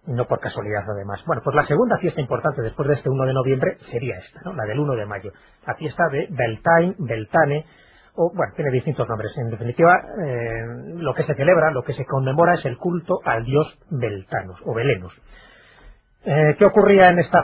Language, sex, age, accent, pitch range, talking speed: Spanish, male, 30-49, Spanish, 115-155 Hz, 200 wpm